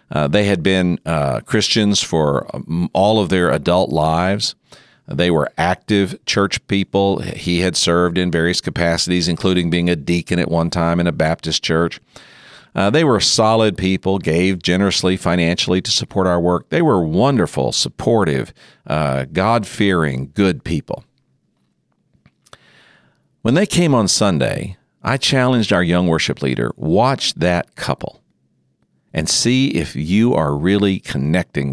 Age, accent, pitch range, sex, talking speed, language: 50-69, American, 80-100 Hz, male, 140 wpm, English